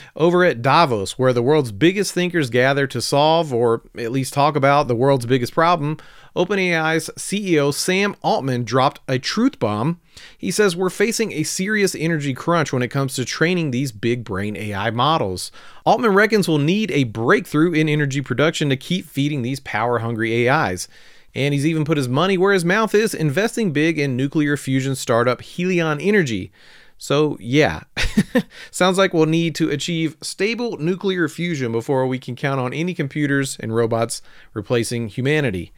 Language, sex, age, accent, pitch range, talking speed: English, male, 40-59, American, 135-175 Hz, 170 wpm